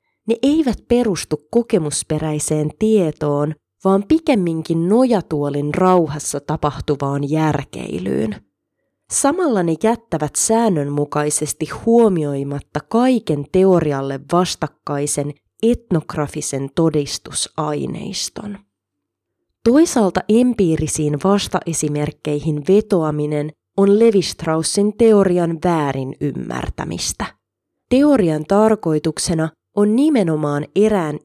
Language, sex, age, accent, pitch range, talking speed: Finnish, female, 20-39, native, 150-205 Hz, 65 wpm